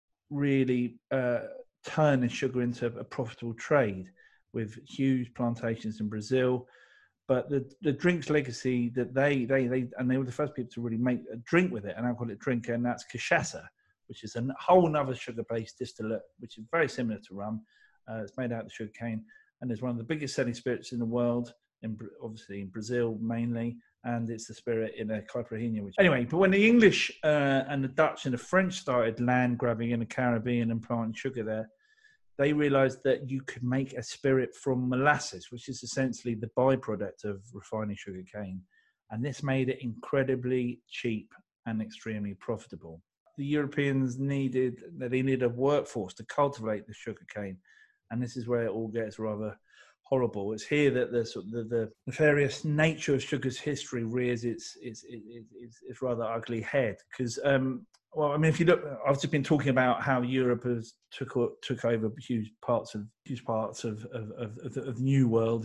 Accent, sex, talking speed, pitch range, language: British, male, 190 wpm, 115-135 Hz, English